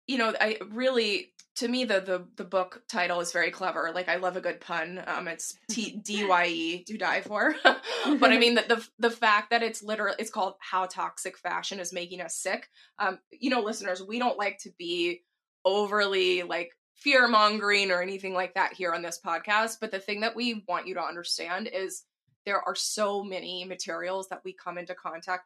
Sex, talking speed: female, 200 wpm